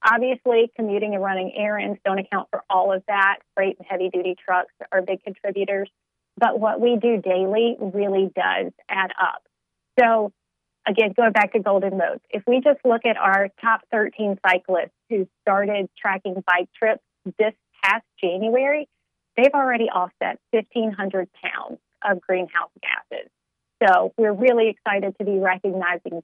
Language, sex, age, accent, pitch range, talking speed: English, female, 30-49, American, 185-220 Hz, 150 wpm